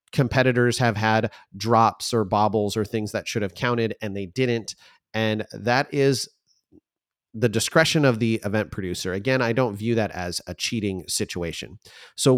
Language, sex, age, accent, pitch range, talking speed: English, male, 30-49, American, 105-130 Hz, 165 wpm